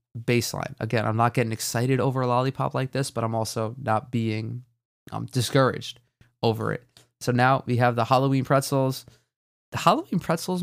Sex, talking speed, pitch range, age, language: male, 170 wpm, 115-135 Hz, 20-39, English